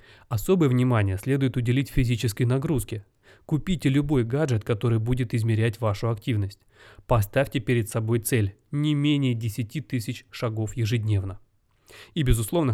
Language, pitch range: Russian, 110-135 Hz